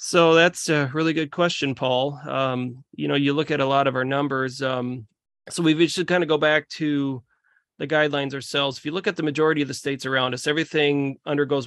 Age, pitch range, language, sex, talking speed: 30-49, 130-150 Hz, English, male, 220 wpm